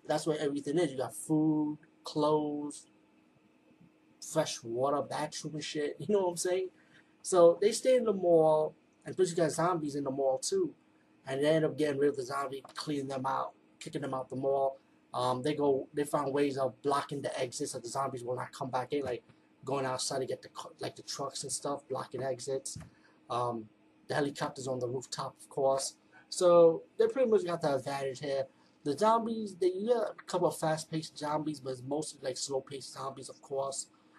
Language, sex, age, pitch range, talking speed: English, male, 20-39, 135-160 Hz, 200 wpm